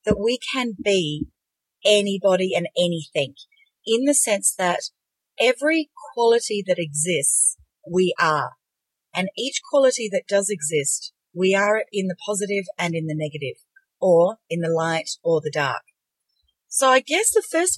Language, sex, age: English, female, 40-59